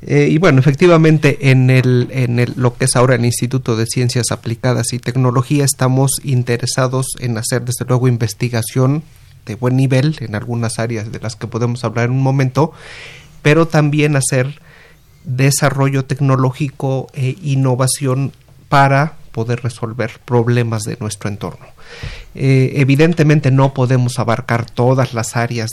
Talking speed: 145 wpm